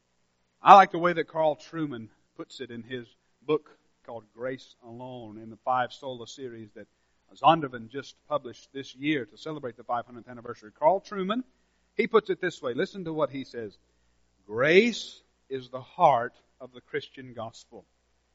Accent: American